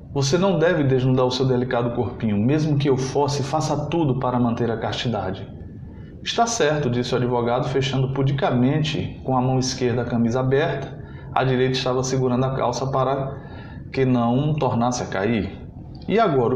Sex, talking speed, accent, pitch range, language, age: male, 165 wpm, Brazilian, 120-150 Hz, Portuguese, 20-39